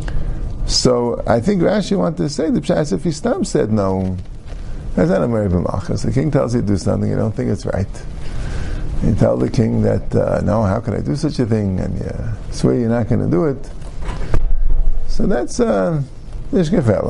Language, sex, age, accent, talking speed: English, male, 50-69, American, 195 wpm